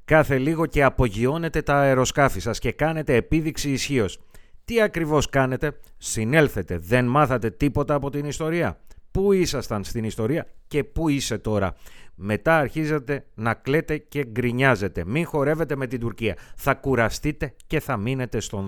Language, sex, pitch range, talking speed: Greek, male, 105-140 Hz, 150 wpm